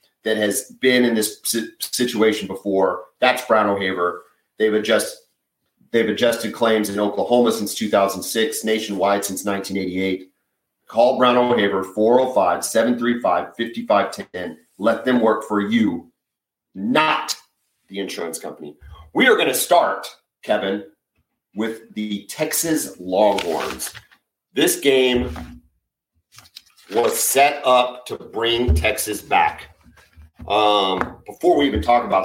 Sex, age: male, 40-59